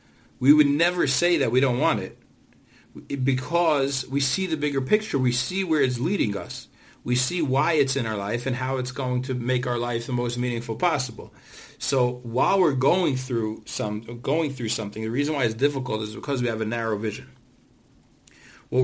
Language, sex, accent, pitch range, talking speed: English, male, American, 125-150 Hz, 200 wpm